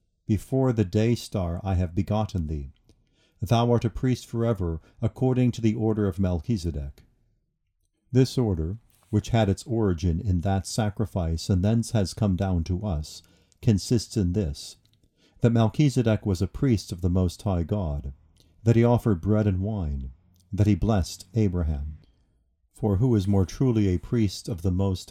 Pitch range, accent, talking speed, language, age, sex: 90-110 Hz, American, 160 wpm, English, 50-69, male